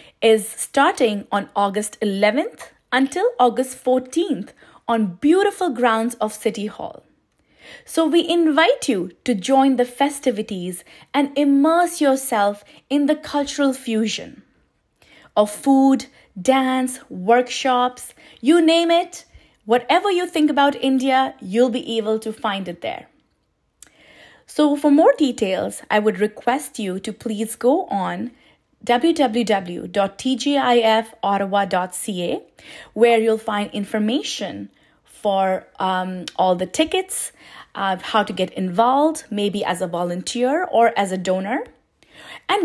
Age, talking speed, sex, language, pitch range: 30-49, 120 wpm, female, English, 205-280 Hz